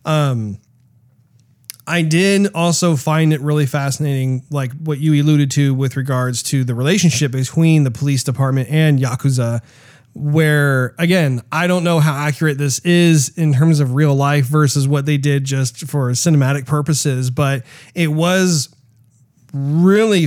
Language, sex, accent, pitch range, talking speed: English, male, American, 130-160 Hz, 150 wpm